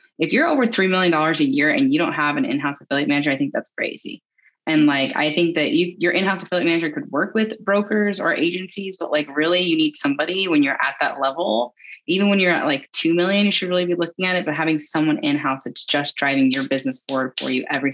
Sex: female